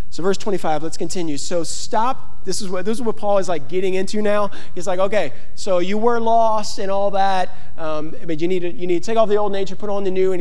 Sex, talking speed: male, 275 wpm